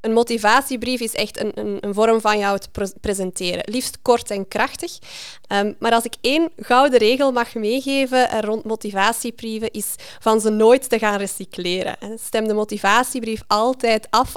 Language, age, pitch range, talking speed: Dutch, 20-39, 200-245 Hz, 165 wpm